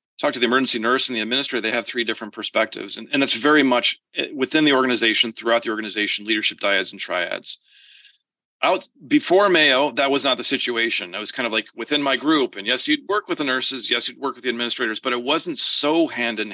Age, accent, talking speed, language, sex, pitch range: 40-59, American, 225 wpm, English, male, 115-150 Hz